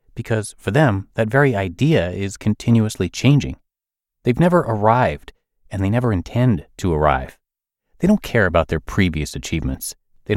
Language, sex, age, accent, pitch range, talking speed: English, male, 30-49, American, 90-125 Hz, 150 wpm